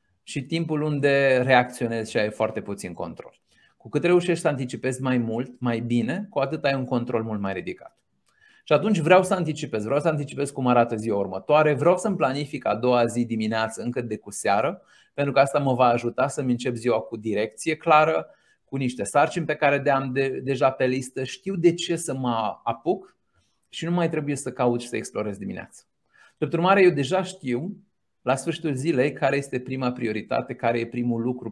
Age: 30-49